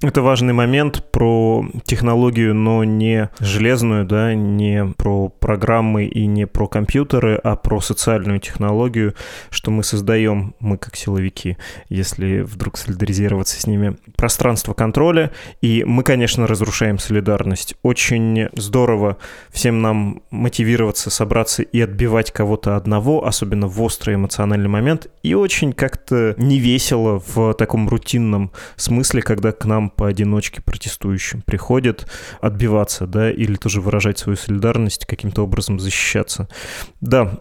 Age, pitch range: 20-39, 105-120 Hz